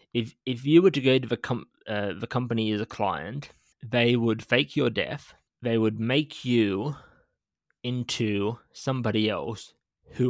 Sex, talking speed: male, 165 wpm